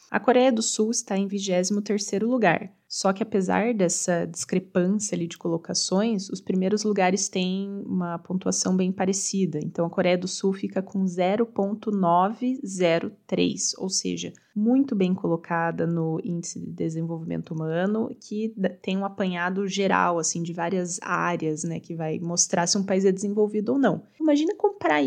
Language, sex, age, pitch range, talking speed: Portuguese, female, 20-39, 180-220 Hz, 155 wpm